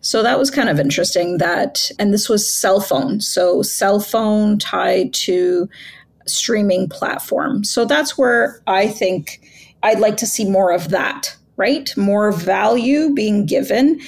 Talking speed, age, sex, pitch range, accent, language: 155 wpm, 30-49, female, 195-265 Hz, American, English